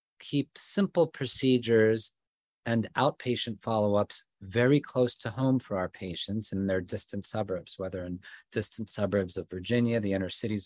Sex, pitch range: male, 100-120 Hz